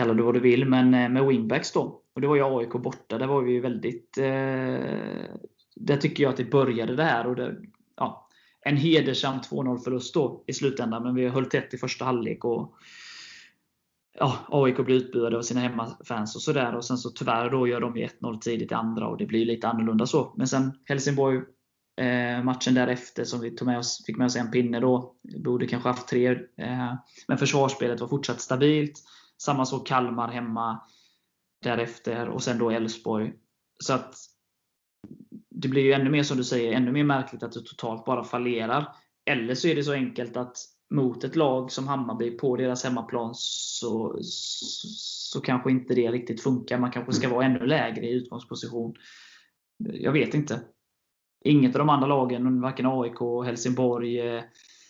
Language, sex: Swedish, male